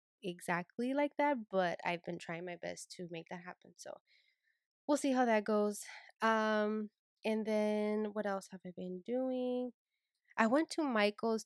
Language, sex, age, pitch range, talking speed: English, female, 20-39, 190-270 Hz, 170 wpm